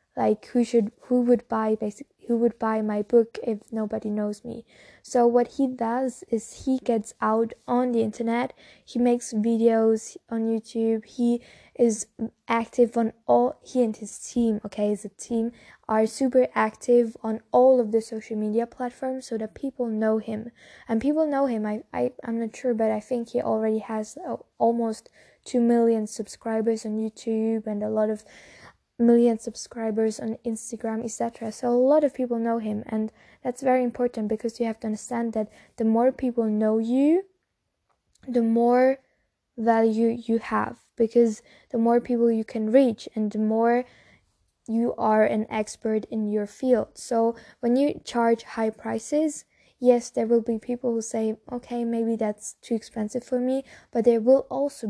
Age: 10-29